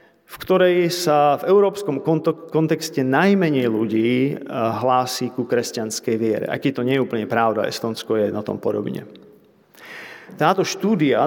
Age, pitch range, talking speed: 40-59, 125-170 Hz, 135 wpm